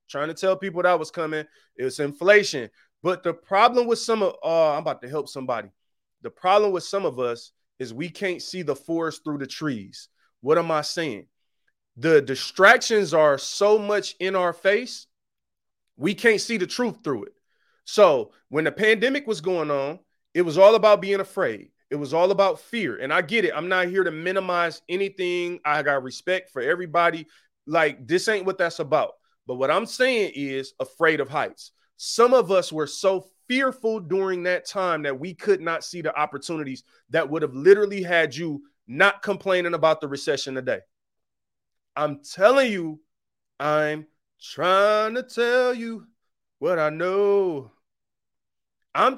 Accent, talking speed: American, 175 wpm